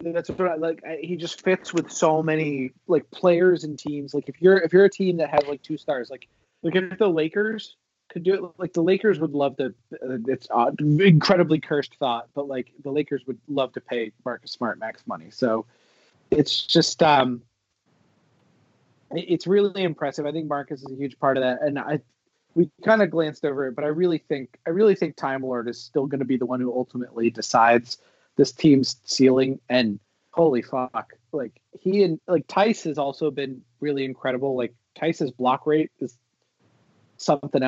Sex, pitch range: male, 130-170 Hz